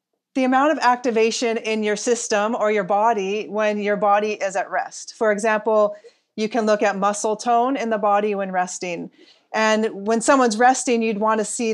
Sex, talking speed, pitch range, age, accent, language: female, 185 wpm, 205-230 Hz, 30-49, American, English